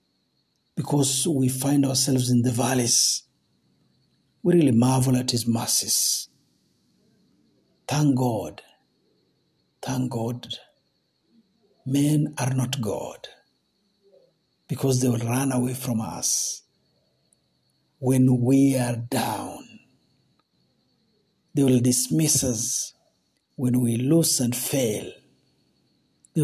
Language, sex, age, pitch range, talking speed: Swahili, male, 60-79, 120-140 Hz, 95 wpm